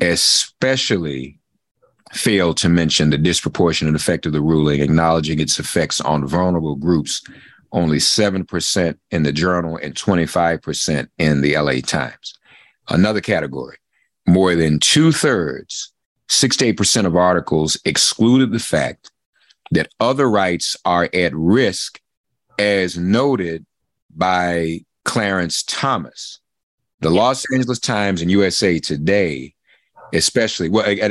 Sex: male